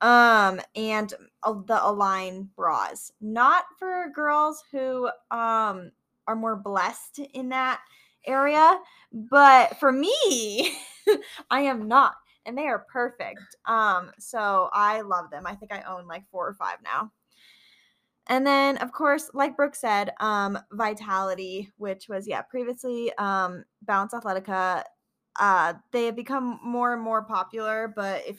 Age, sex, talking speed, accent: 10-29, female, 140 wpm, American